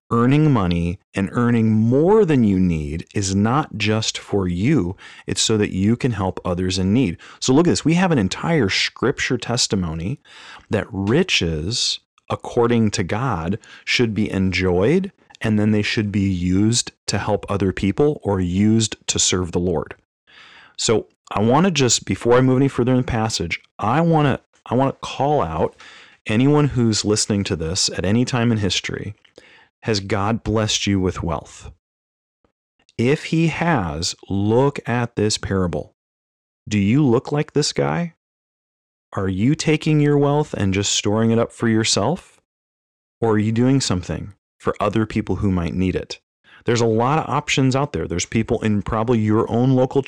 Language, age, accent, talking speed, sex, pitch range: English, 30-49, American, 175 wpm, male, 95-125 Hz